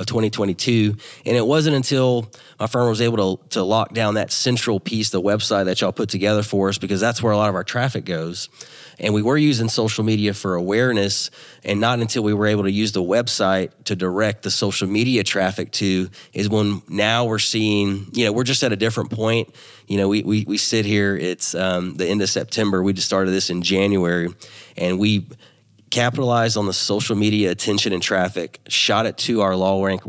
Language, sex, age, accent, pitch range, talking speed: English, male, 30-49, American, 95-115 Hz, 215 wpm